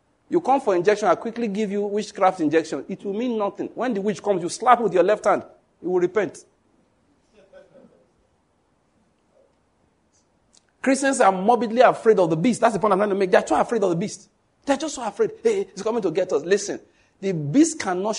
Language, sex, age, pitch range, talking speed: English, male, 50-69, 195-270 Hz, 210 wpm